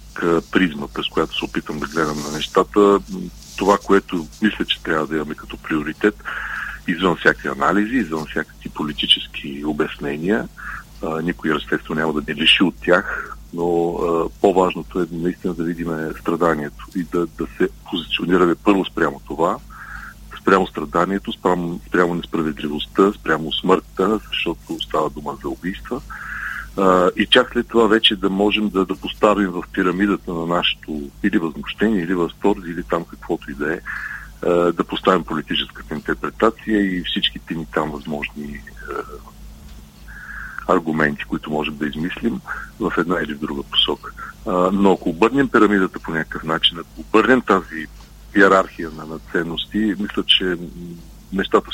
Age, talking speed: 40-59, 140 wpm